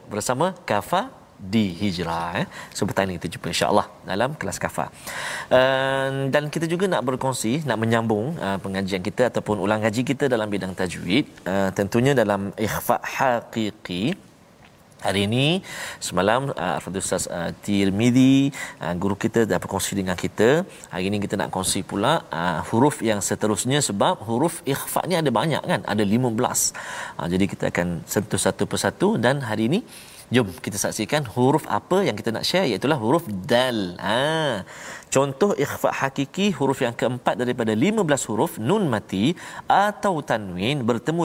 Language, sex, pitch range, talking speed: Malayalam, male, 105-165 Hz, 150 wpm